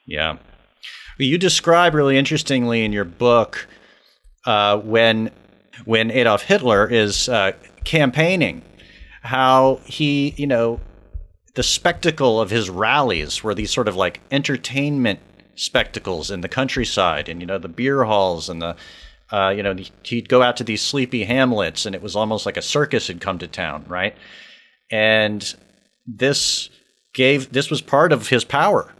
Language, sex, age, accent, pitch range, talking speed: English, male, 40-59, American, 95-130 Hz, 155 wpm